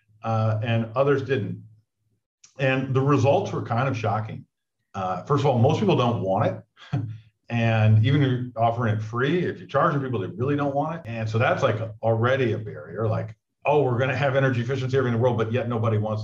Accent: American